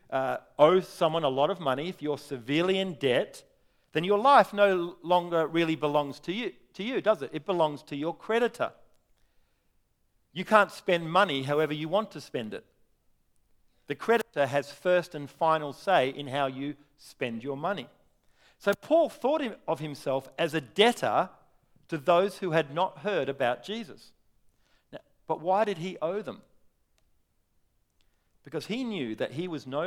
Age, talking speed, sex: 40-59, 165 wpm, male